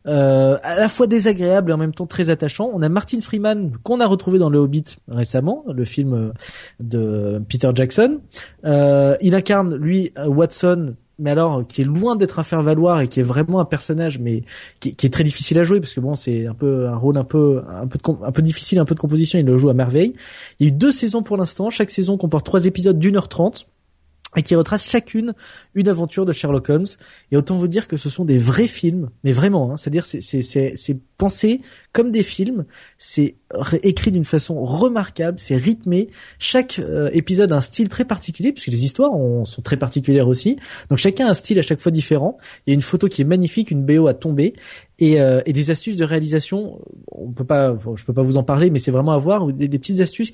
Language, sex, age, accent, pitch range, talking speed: French, male, 20-39, French, 140-195 Hz, 235 wpm